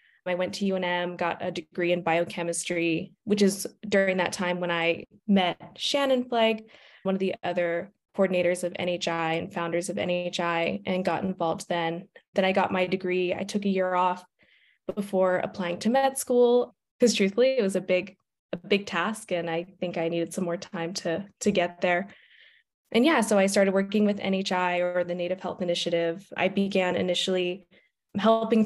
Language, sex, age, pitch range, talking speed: English, female, 20-39, 175-200 Hz, 180 wpm